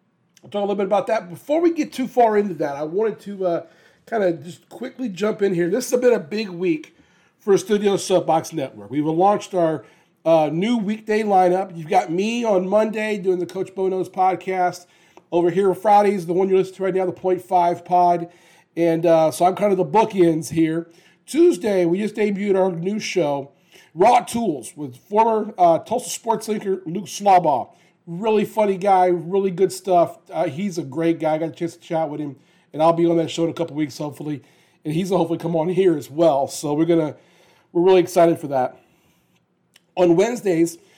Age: 40-59